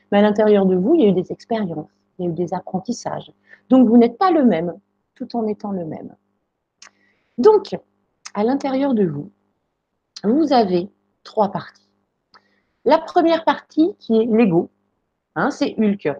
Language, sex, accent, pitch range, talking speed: French, female, French, 200-280 Hz, 165 wpm